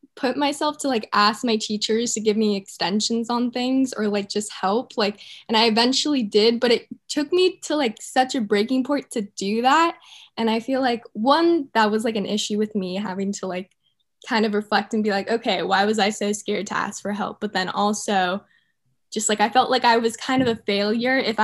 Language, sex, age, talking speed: English, female, 10-29, 225 wpm